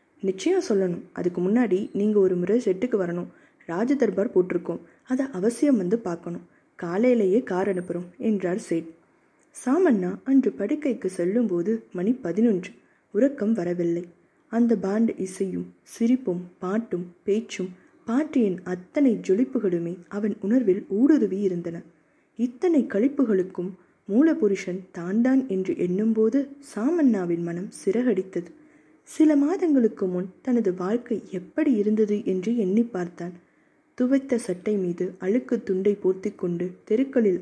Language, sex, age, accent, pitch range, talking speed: Tamil, female, 20-39, native, 185-245 Hz, 105 wpm